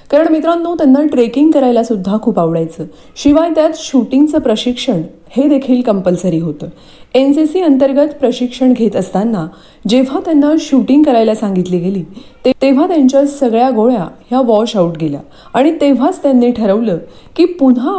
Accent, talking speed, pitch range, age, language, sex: native, 145 wpm, 205-280 Hz, 30-49, Marathi, female